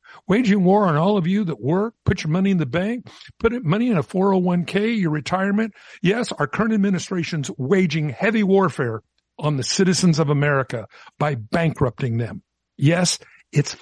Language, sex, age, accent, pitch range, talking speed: English, male, 60-79, American, 145-200 Hz, 165 wpm